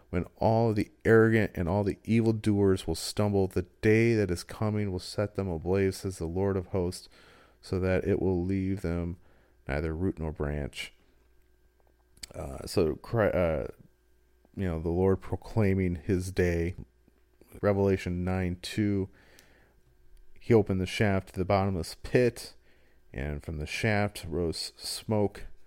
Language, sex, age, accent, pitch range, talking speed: English, male, 40-59, American, 80-100 Hz, 145 wpm